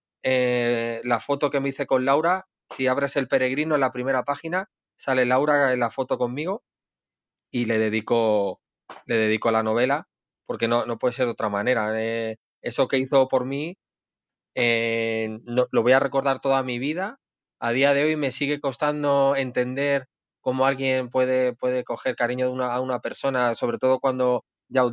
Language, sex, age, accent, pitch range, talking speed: Spanish, male, 20-39, Spanish, 120-140 Hz, 185 wpm